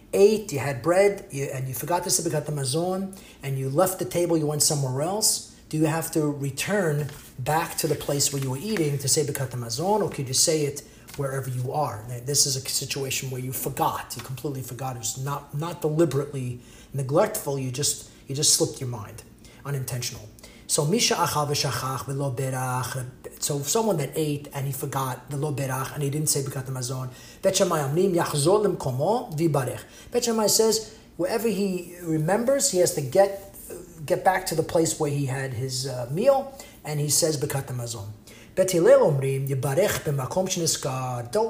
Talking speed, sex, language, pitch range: 170 wpm, male, English, 135-175 Hz